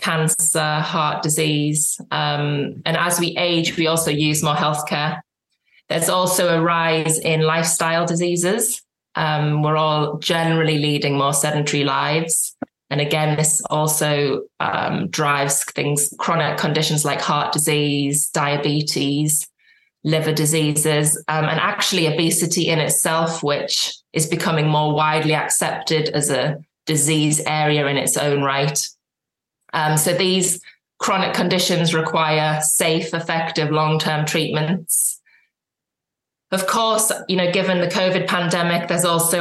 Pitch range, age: 150-175 Hz, 20-39